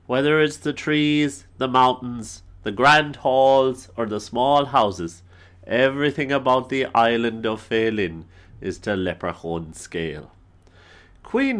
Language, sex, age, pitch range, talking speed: English, male, 40-59, 95-155 Hz, 125 wpm